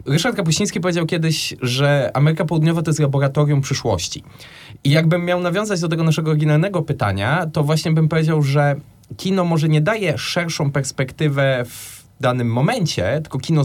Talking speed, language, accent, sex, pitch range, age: 160 wpm, Polish, native, male, 135-155 Hz, 20-39